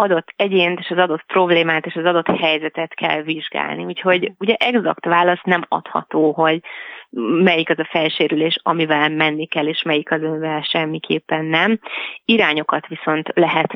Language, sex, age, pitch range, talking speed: Hungarian, female, 30-49, 155-175 Hz, 155 wpm